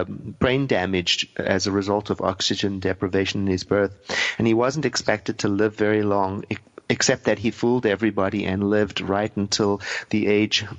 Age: 40-59